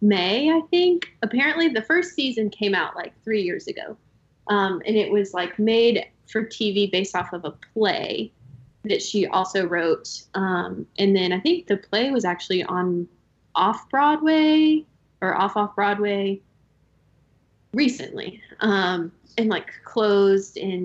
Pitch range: 180-215 Hz